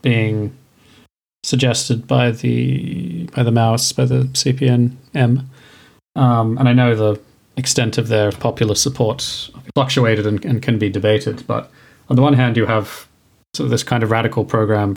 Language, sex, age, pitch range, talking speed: English, male, 30-49, 115-135 Hz, 160 wpm